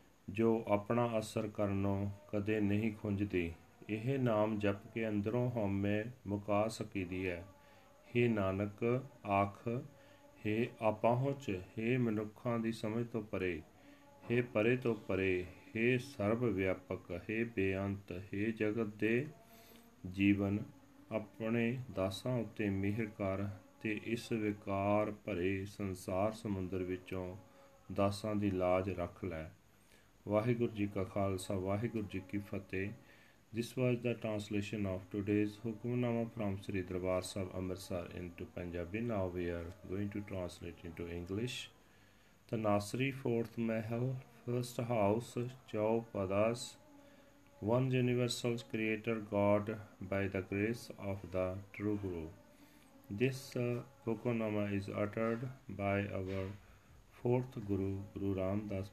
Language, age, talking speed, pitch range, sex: Punjabi, 40-59, 110 wpm, 95-115 Hz, male